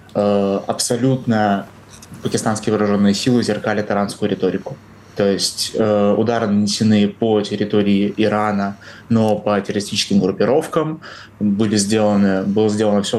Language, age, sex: Russian, 20-39, male